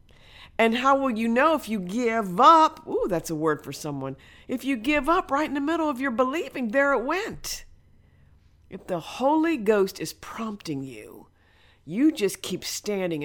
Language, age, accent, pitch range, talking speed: English, 50-69, American, 145-200 Hz, 180 wpm